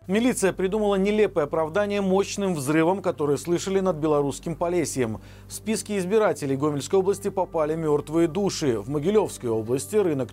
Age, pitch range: 40-59, 140-185 Hz